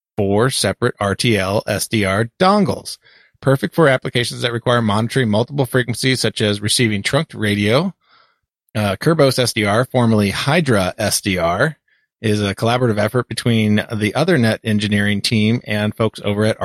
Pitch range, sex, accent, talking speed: 110-135 Hz, male, American, 125 wpm